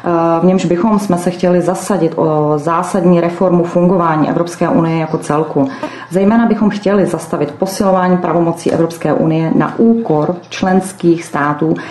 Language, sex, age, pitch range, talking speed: Czech, female, 30-49, 160-185 Hz, 135 wpm